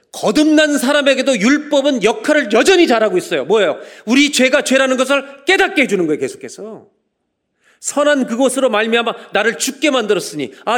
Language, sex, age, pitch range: Korean, male, 40-59, 200-295 Hz